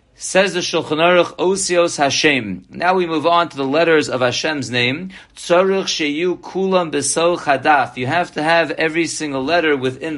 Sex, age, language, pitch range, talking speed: male, 40-59, English, 145-170 Hz, 160 wpm